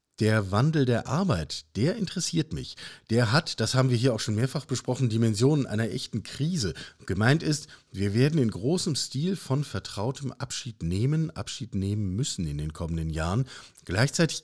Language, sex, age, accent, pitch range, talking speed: German, male, 50-69, German, 110-150 Hz, 165 wpm